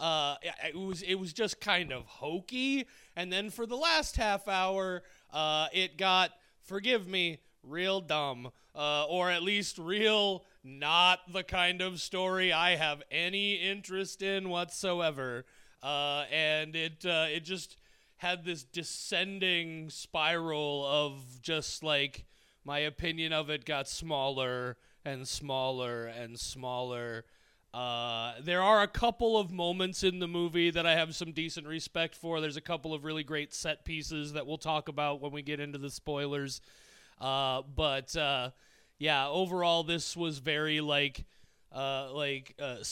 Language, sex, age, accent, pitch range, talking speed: English, male, 30-49, American, 135-175 Hz, 150 wpm